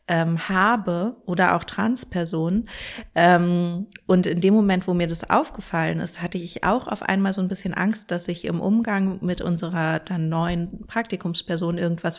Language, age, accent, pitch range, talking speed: German, 30-49, German, 155-180 Hz, 160 wpm